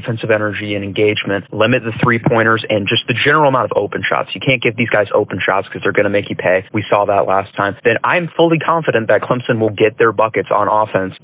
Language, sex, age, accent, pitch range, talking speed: English, male, 20-39, American, 105-125 Hz, 245 wpm